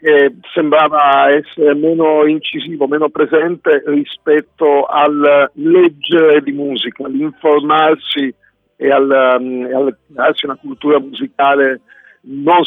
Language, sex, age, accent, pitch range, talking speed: Italian, male, 50-69, native, 145-180 Hz, 100 wpm